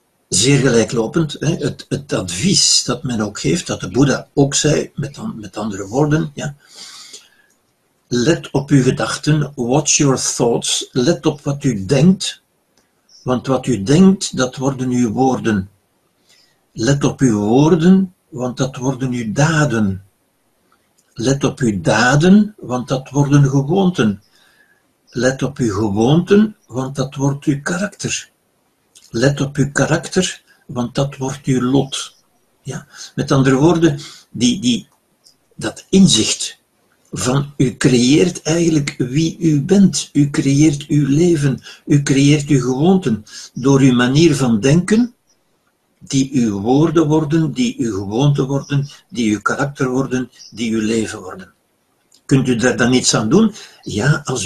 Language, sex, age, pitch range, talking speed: Dutch, male, 60-79, 130-160 Hz, 140 wpm